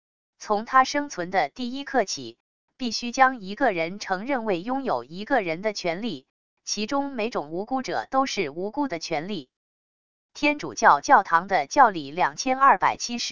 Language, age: English, 20-39